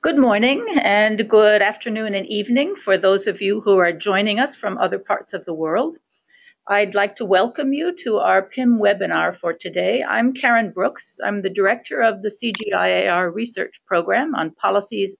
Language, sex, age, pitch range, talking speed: English, female, 60-79, 195-260 Hz, 180 wpm